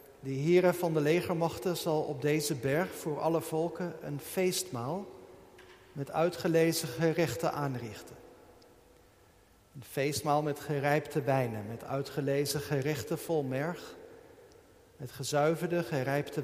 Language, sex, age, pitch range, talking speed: Dutch, male, 50-69, 140-180 Hz, 115 wpm